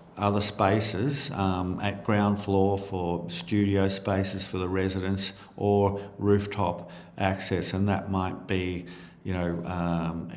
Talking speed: 125 wpm